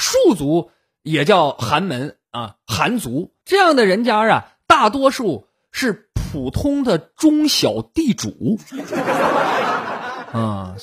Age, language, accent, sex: 20-39, Chinese, native, male